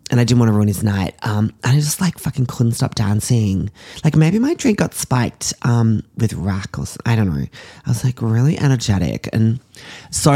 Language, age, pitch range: English, 20-39, 105-140 Hz